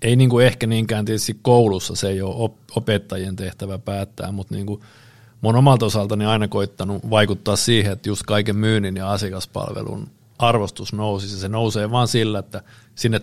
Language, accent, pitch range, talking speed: Finnish, native, 100-120 Hz, 165 wpm